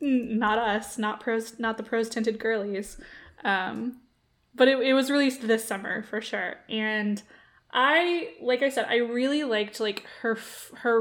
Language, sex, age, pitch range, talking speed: English, female, 10-29, 205-240 Hz, 165 wpm